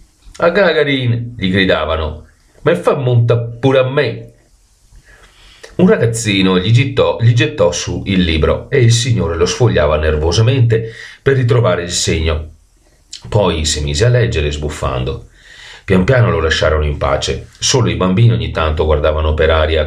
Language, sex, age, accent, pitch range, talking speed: Italian, male, 40-59, native, 80-120 Hz, 145 wpm